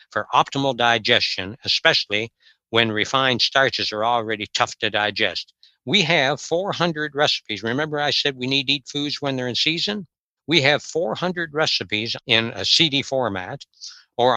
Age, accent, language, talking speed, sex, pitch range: 60-79, American, English, 155 wpm, male, 115-145 Hz